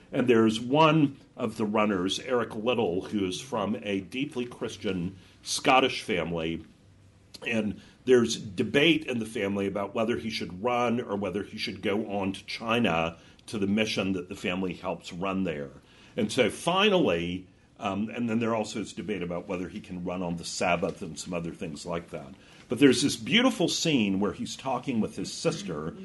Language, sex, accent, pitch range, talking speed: English, male, American, 90-120 Hz, 180 wpm